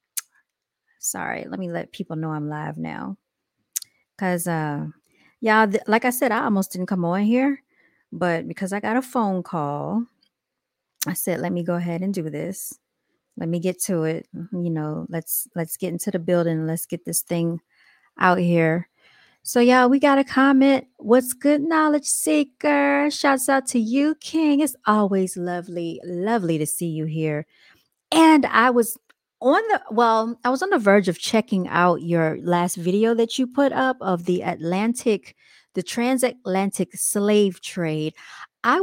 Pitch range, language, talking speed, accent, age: 170-235 Hz, English, 170 wpm, American, 30-49